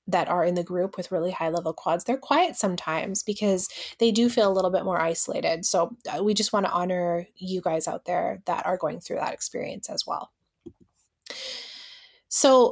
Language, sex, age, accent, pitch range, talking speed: English, female, 20-39, American, 175-225 Hz, 195 wpm